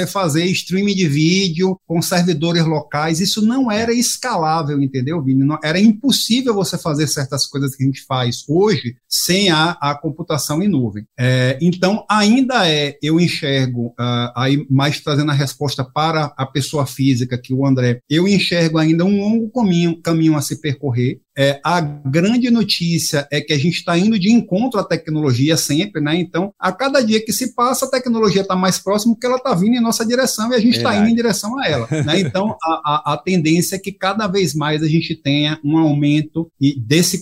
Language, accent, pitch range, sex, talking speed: Portuguese, Brazilian, 145-185 Hz, male, 195 wpm